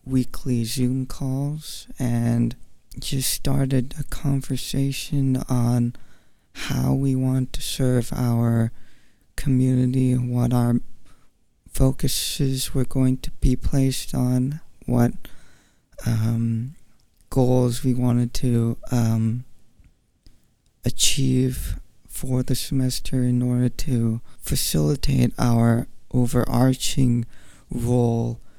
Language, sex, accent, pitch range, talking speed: English, male, American, 115-130 Hz, 90 wpm